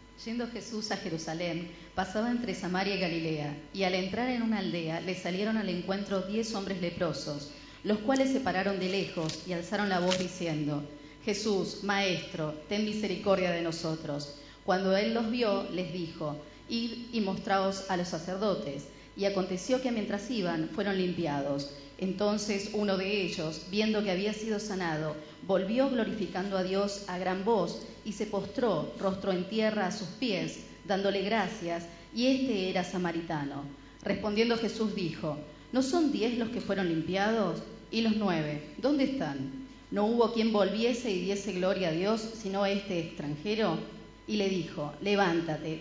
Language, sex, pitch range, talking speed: Spanish, female, 170-210 Hz, 160 wpm